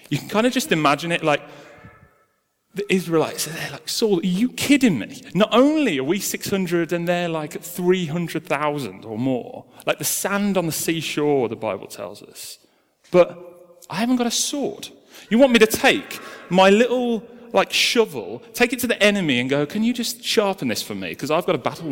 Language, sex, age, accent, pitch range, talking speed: English, male, 30-49, British, 145-235 Hz, 200 wpm